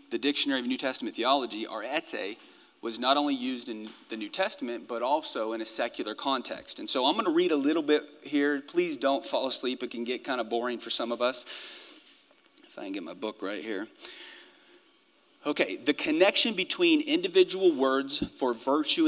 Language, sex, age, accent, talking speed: English, male, 40-59, American, 195 wpm